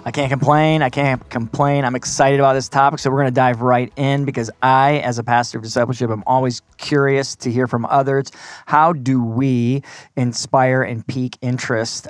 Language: English